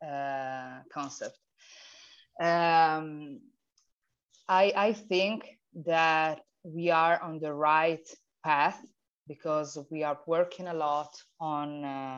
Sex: female